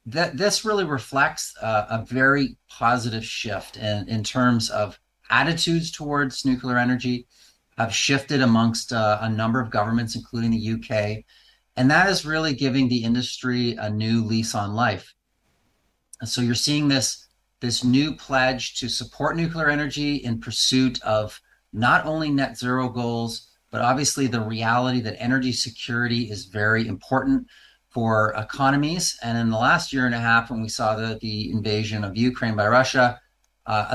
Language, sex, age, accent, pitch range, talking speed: English, male, 30-49, American, 110-130 Hz, 160 wpm